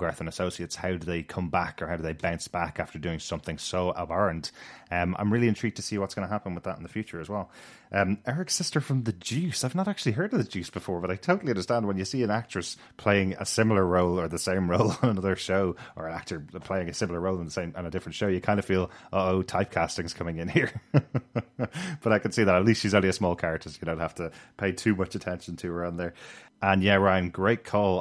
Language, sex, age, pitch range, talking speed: English, male, 30-49, 85-105 Hz, 265 wpm